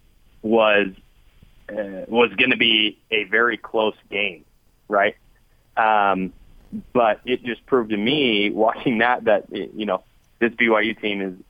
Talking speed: 140 wpm